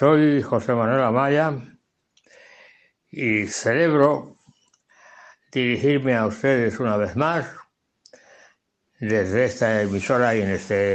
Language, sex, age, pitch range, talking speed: Spanish, male, 60-79, 115-155 Hz, 100 wpm